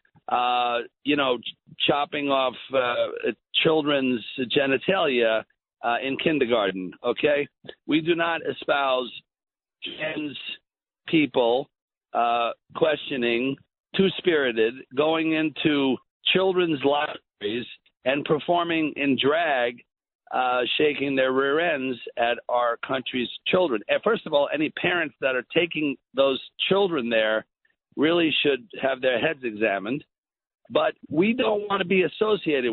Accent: American